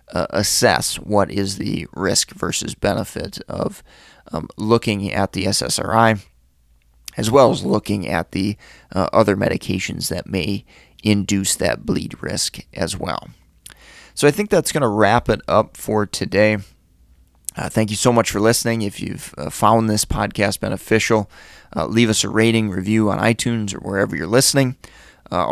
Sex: male